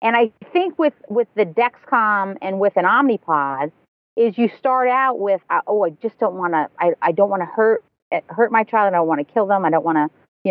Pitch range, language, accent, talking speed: 170-245 Hz, English, American, 245 wpm